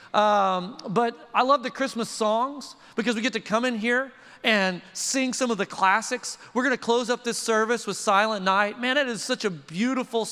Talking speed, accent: 205 wpm, American